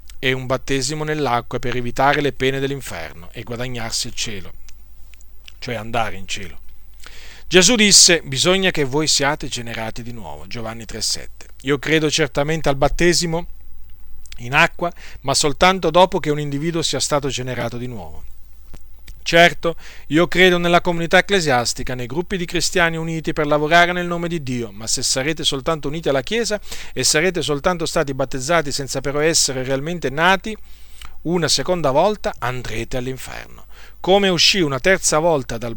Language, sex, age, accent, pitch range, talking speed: Italian, male, 40-59, native, 120-165 Hz, 155 wpm